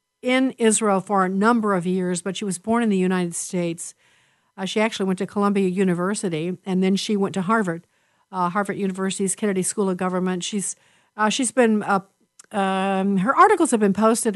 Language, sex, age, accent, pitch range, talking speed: English, female, 50-69, American, 185-220 Hz, 190 wpm